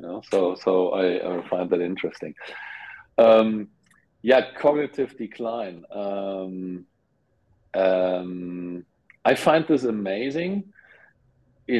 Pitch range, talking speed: 95-125 Hz, 100 wpm